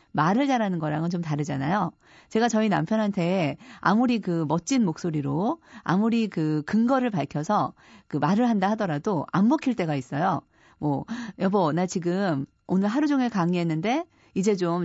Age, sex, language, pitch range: 40-59, female, Korean, 160-230 Hz